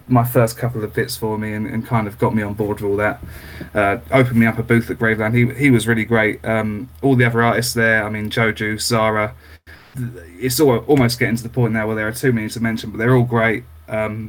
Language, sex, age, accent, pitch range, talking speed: English, male, 20-39, British, 110-125 Hz, 255 wpm